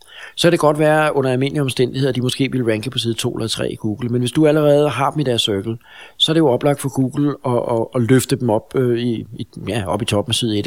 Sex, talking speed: male, 280 wpm